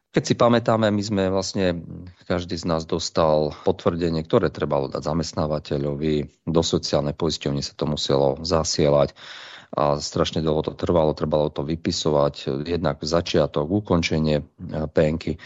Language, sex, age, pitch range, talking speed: Slovak, male, 40-59, 75-90 Hz, 130 wpm